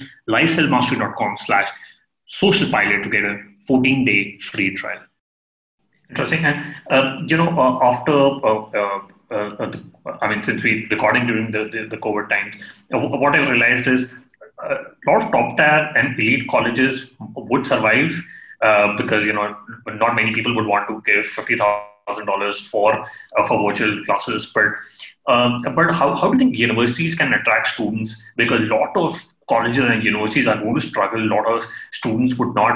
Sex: male